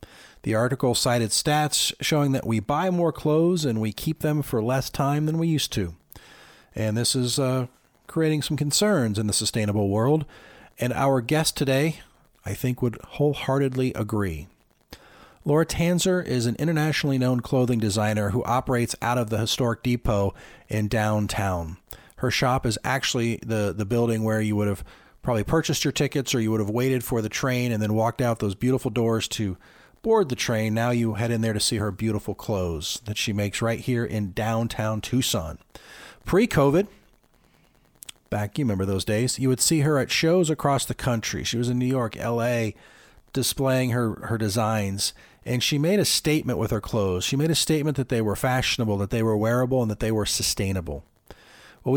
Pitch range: 110-140 Hz